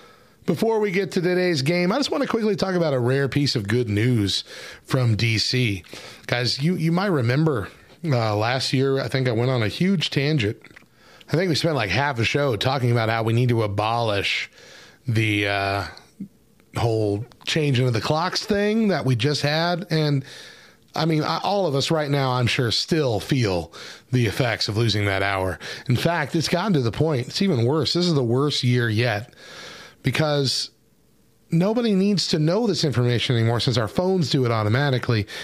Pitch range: 120-175 Hz